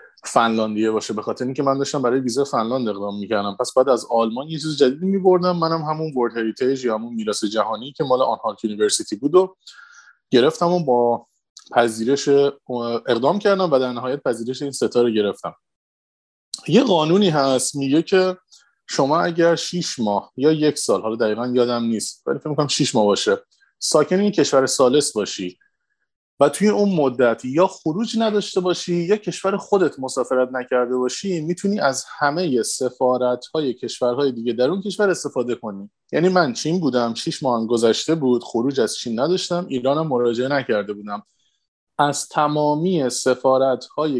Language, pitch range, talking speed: Persian, 120-170 Hz, 160 wpm